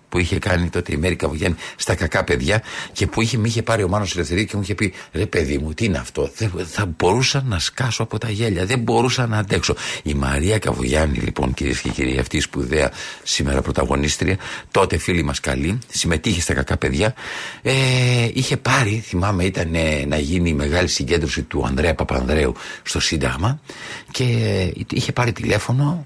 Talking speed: 175 wpm